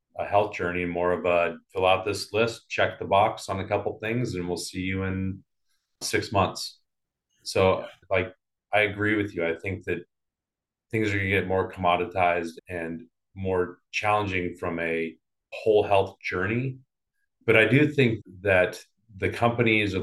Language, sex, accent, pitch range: English, male, American, 90-105 Hz